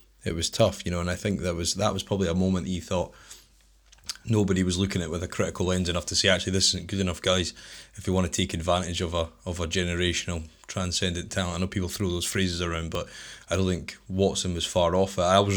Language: English